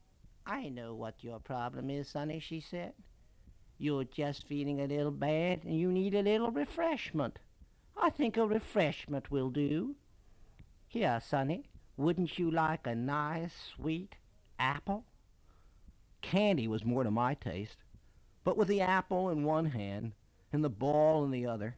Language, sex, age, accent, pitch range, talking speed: English, male, 60-79, American, 115-175 Hz, 150 wpm